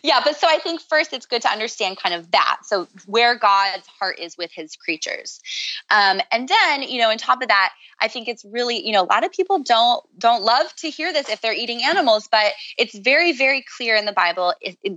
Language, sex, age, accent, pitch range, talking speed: English, female, 20-39, American, 185-245 Hz, 235 wpm